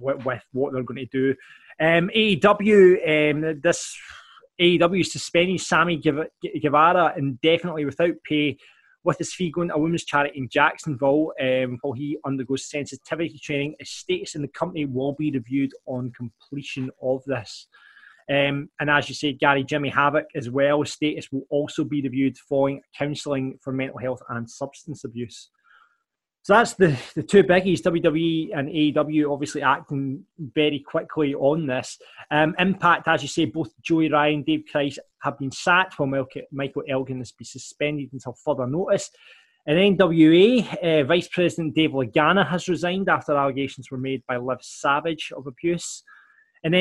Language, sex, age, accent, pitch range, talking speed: English, male, 20-39, British, 140-170 Hz, 160 wpm